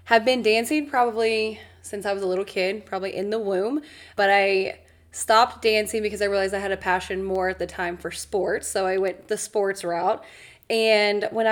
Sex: female